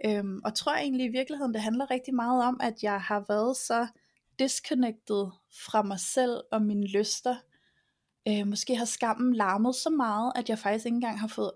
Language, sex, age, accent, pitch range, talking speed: Danish, female, 20-39, native, 200-240 Hz, 180 wpm